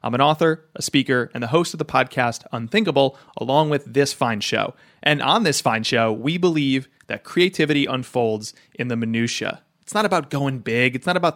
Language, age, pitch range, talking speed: English, 30-49, 120-155 Hz, 200 wpm